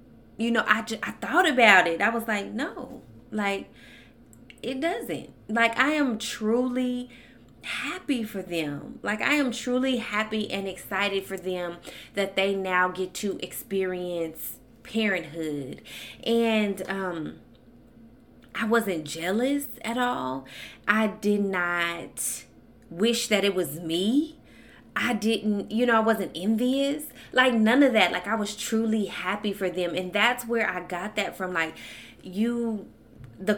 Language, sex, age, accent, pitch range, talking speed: English, female, 20-39, American, 180-235 Hz, 145 wpm